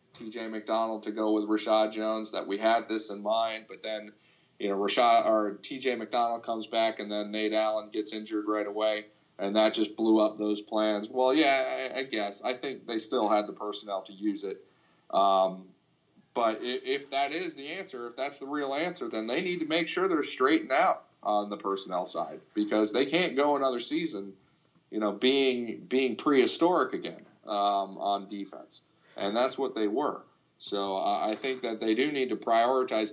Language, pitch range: English, 105-135 Hz